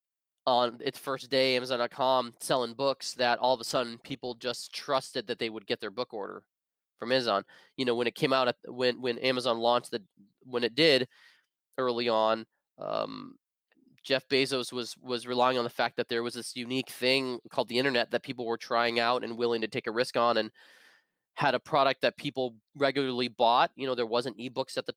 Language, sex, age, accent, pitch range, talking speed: English, male, 20-39, American, 120-135 Hz, 205 wpm